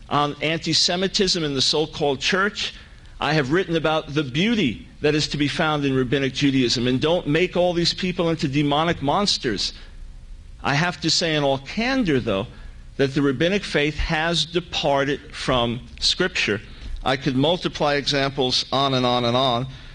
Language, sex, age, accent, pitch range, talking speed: English, male, 50-69, American, 120-155 Hz, 165 wpm